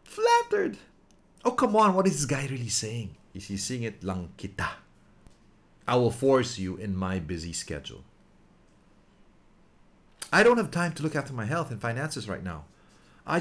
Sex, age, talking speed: male, 50-69, 160 wpm